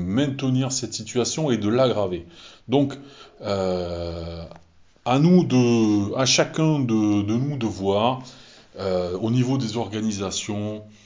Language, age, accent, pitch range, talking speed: French, 30-49, French, 95-120 Hz, 125 wpm